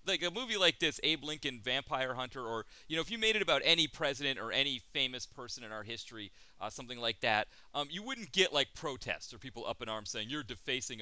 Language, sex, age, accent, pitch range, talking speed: English, male, 30-49, American, 110-160 Hz, 240 wpm